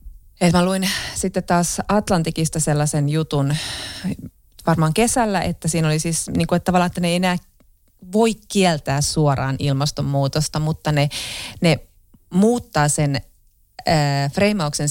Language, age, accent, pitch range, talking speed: Finnish, 30-49, native, 140-165 Hz, 115 wpm